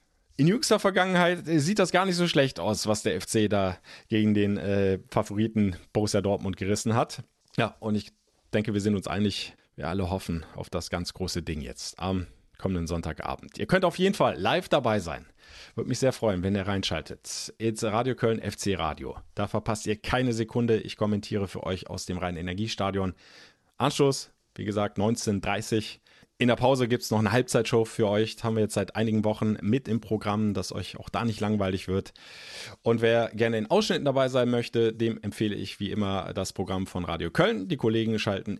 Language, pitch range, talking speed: German, 95-120 Hz, 195 wpm